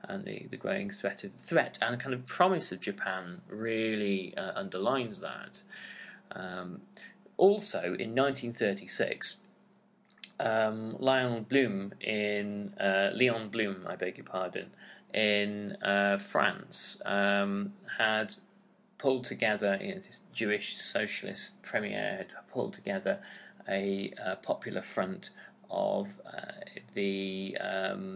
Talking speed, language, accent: 120 wpm, English, British